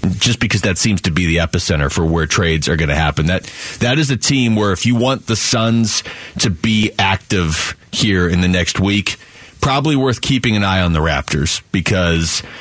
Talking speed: 205 wpm